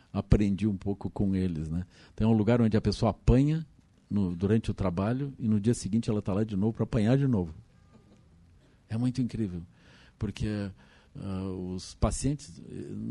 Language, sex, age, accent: Portuguese, male, 50-69, Brazilian